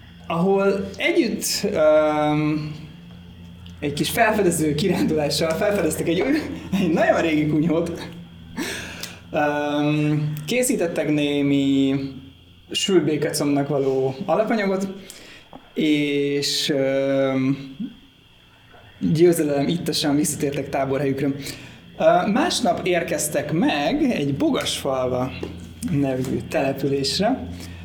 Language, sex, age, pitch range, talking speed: Hungarian, male, 20-39, 130-165 Hz, 70 wpm